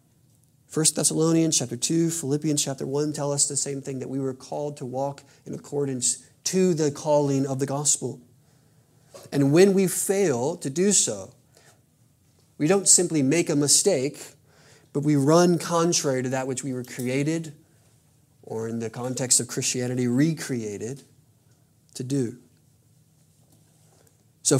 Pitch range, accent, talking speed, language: 130-160 Hz, American, 145 wpm, English